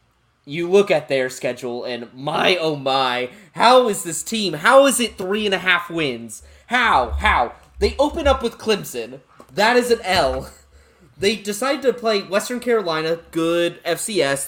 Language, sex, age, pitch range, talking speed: English, male, 20-39, 145-215 Hz, 165 wpm